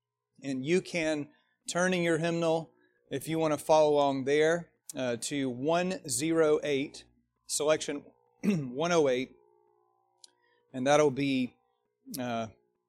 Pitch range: 120-155 Hz